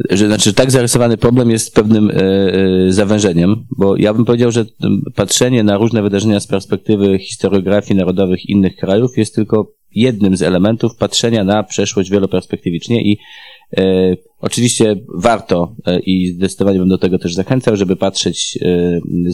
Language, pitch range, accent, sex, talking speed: Polish, 95-115 Hz, native, male, 160 wpm